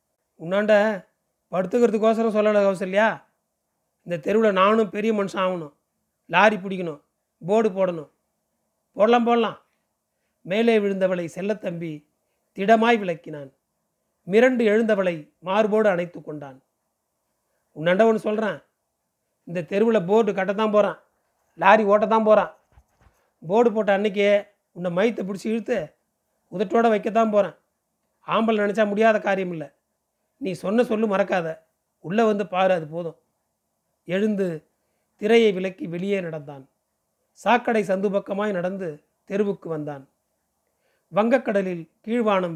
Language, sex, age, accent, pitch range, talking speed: Tamil, male, 30-49, native, 175-215 Hz, 105 wpm